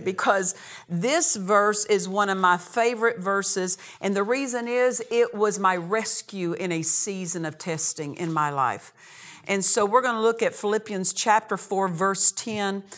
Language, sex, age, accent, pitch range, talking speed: English, female, 50-69, American, 175-215 Hz, 165 wpm